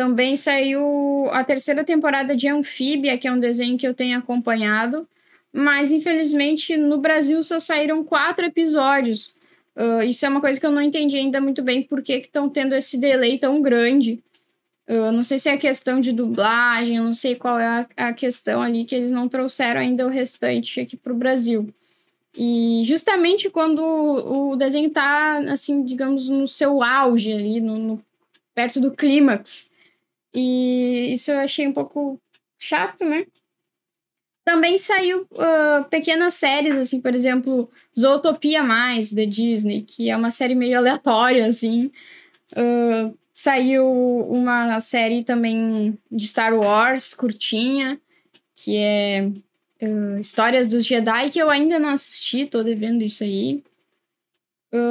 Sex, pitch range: female, 240-295 Hz